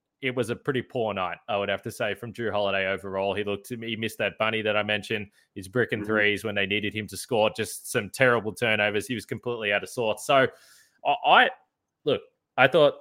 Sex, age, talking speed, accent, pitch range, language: male, 20-39, 235 wpm, Australian, 110-135 Hz, English